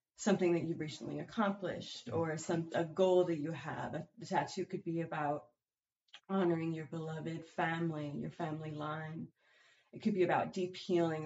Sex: female